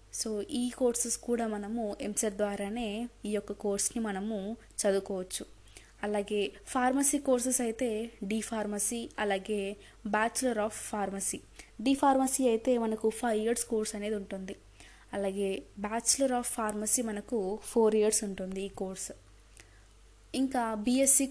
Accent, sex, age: native, female, 20-39